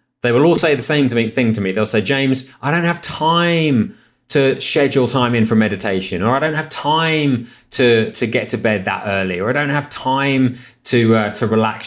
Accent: British